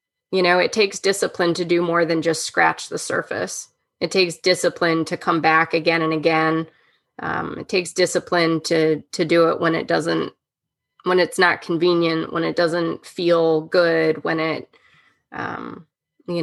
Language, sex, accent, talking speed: English, female, American, 170 wpm